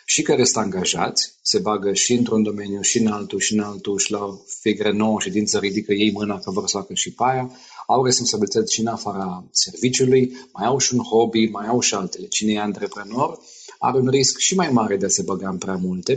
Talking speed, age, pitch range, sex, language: 245 wpm, 30-49, 105-145 Hz, male, Romanian